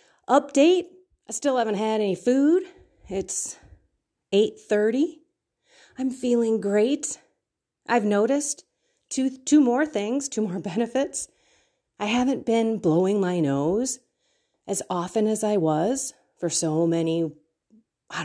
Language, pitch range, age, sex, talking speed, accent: English, 160-260 Hz, 40-59, female, 120 wpm, American